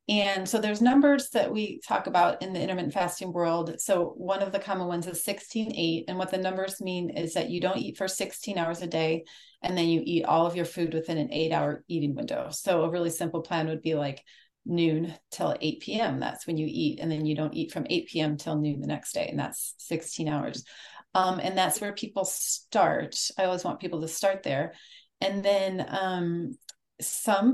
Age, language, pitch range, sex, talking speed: 30-49, English, 165-195 Hz, female, 220 wpm